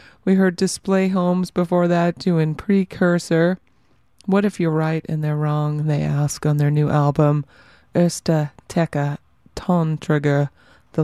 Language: English